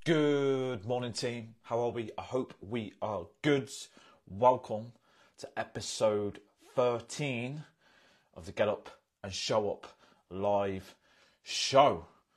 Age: 30-49